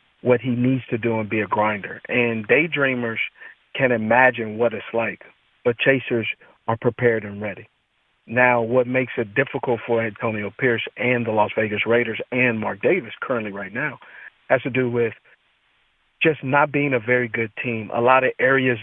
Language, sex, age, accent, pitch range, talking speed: English, male, 50-69, American, 120-145 Hz, 180 wpm